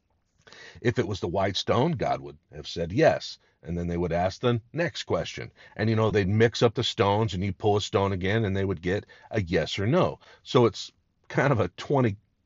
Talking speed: 225 wpm